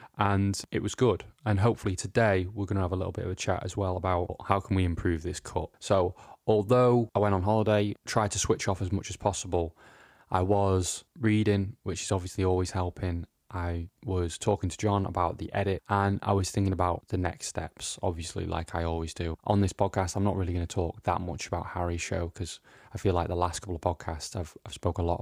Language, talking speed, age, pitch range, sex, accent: English, 230 wpm, 20-39, 85-100 Hz, male, British